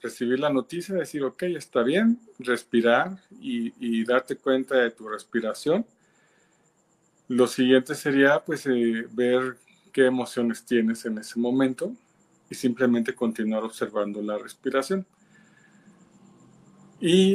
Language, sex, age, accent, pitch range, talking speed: Spanish, male, 40-59, Mexican, 120-145 Hz, 120 wpm